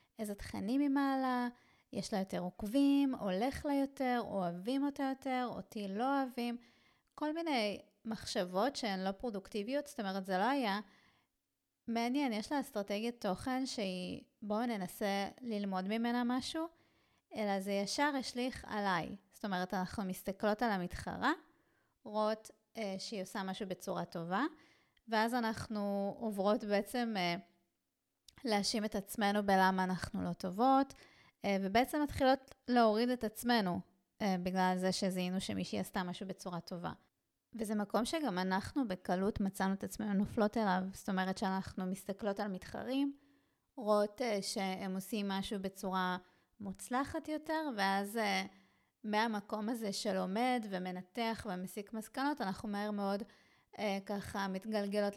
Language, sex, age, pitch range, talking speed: Hebrew, female, 30-49, 195-245 Hz, 125 wpm